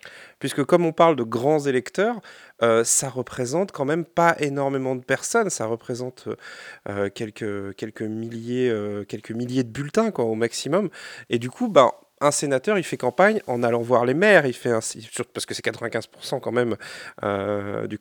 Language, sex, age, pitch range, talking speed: French, male, 30-49, 115-145 Hz, 160 wpm